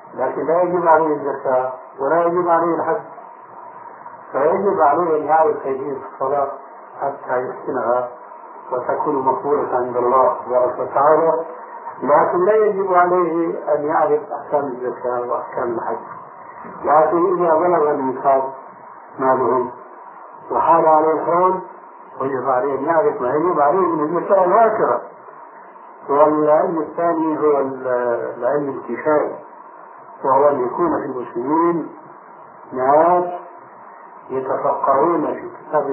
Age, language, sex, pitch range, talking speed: 50-69, Arabic, male, 135-180 Hz, 110 wpm